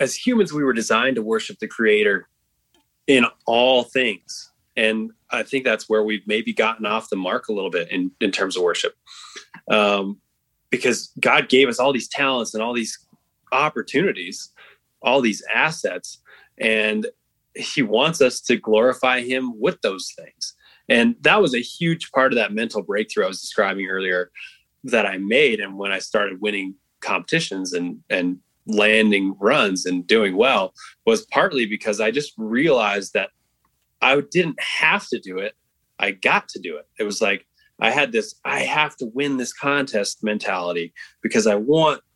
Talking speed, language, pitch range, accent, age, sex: 170 wpm, English, 105-150 Hz, American, 20-39, male